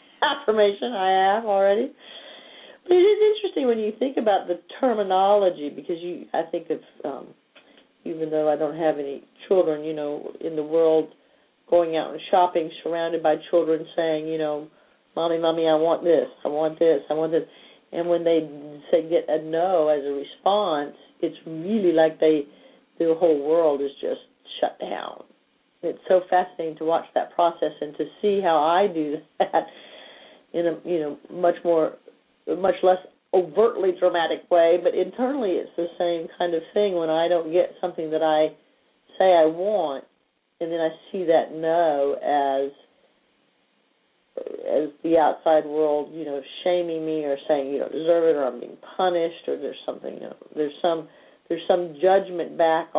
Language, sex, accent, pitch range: English, female, American, 155-185 Hz